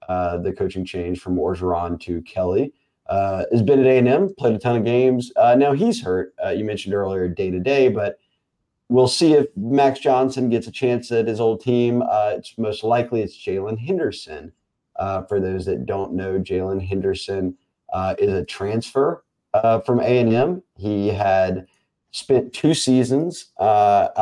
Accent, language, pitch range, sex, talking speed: American, English, 95-120 Hz, male, 175 wpm